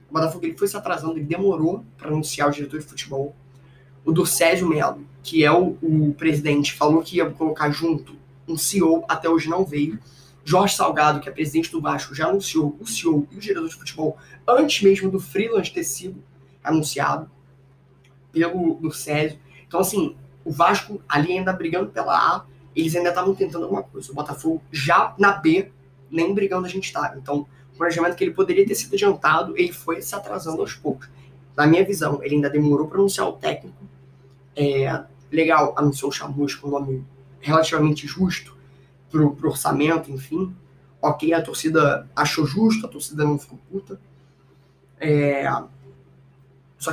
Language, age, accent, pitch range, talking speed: Portuguese, 20-39, Brazilian, 135-175 Hz, 175 wpm